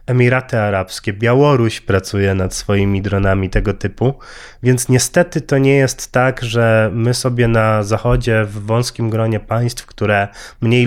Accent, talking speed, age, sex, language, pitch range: native, 145 wpm, 20-39, male, Polish, 110-130 Hz